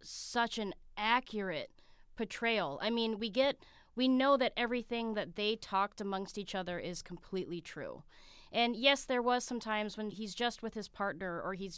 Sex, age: female, 20-39